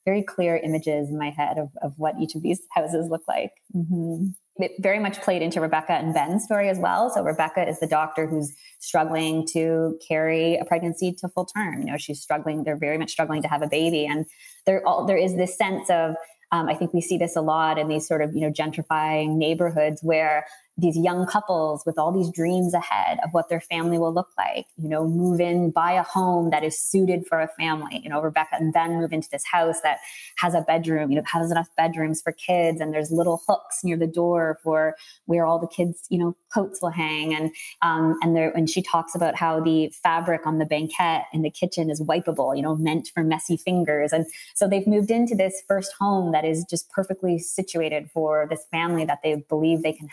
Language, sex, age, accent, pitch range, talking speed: English, female, 20-39, American, 155-175 Hz, 225 wpm